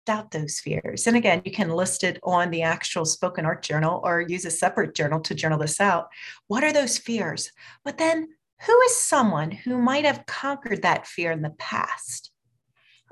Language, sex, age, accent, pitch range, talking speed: English, female, 30-49, American, 170-270 Hz, 195 wpm